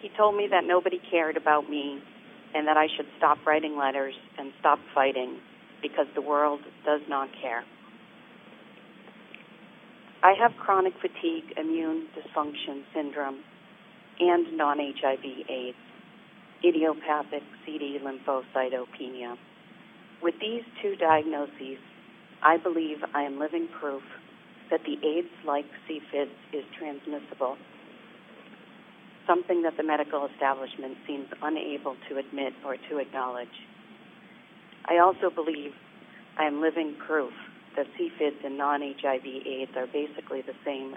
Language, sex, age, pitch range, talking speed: English, female, 50-69, 140-175 Hz, 120 wpm